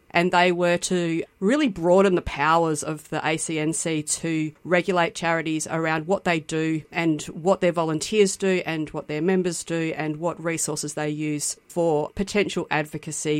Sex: female